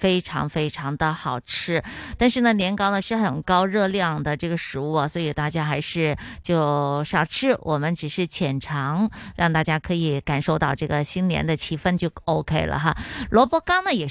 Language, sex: Chinese, female